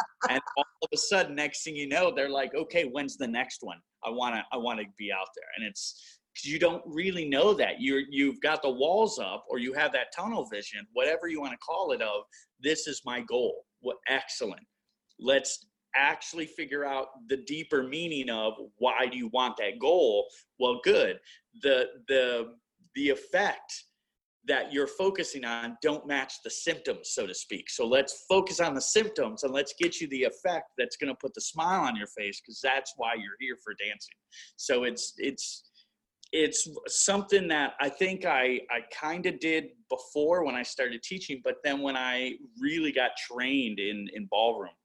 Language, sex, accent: English, male, American